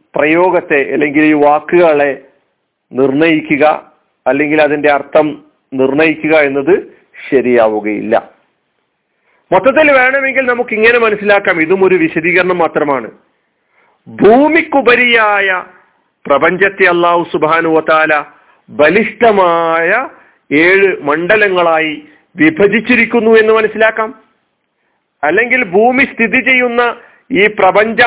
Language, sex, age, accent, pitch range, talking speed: Malayalam, male, 50-69, native, 170-255 Hz, 80 wpm